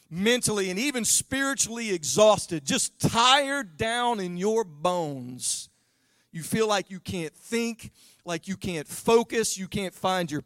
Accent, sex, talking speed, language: American, male, 145 wpm, English